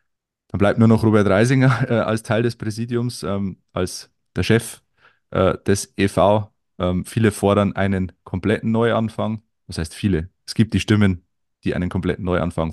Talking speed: 165 wpm